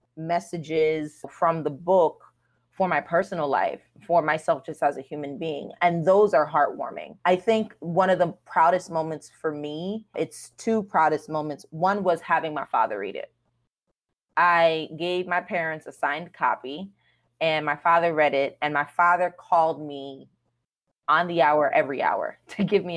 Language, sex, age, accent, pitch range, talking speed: English, female, 20-39, American, 155-180 Hz, 165 wpm